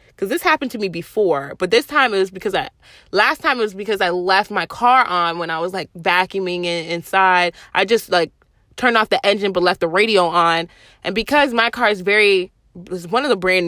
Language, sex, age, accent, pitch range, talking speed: English, female, 20-39, American, 175-245 Hz, 230 wpm